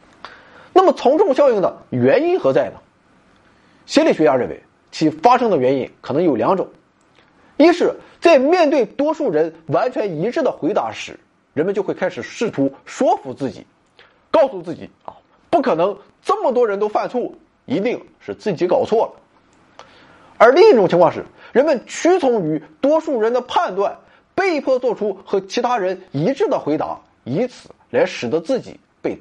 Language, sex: Chinese, male